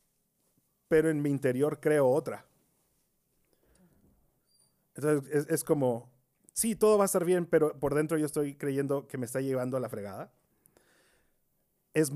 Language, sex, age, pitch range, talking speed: Spanish, male, 30-49, 120-150 Hz, 150 wpm